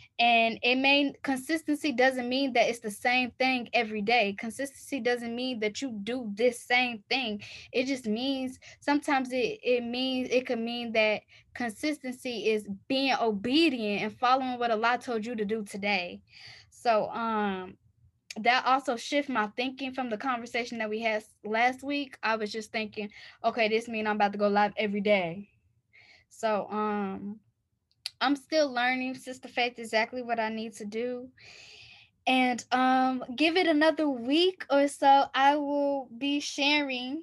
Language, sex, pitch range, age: English, female, 220-275 Hz, 10-29